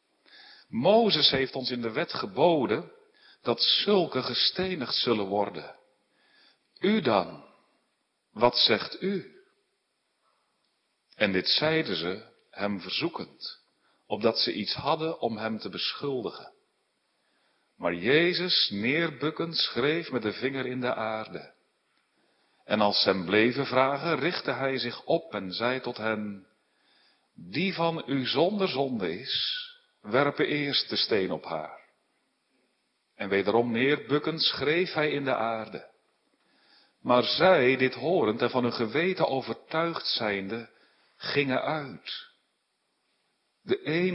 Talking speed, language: 120 wpm, Dutch